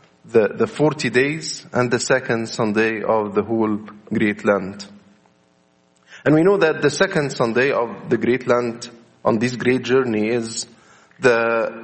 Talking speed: 150 wpm